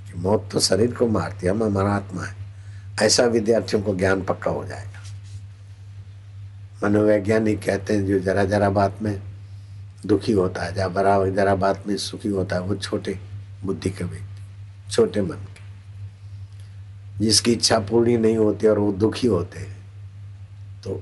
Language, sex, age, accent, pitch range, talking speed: Hindi, male, 60-79, native, 100-110 Hz, 150 wpm